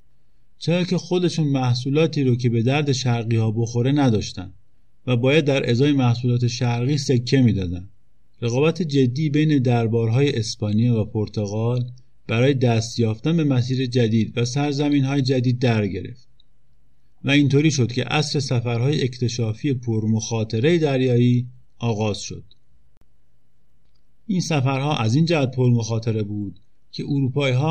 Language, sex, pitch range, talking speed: Persian, male, 115-140 Hz, 125 wpm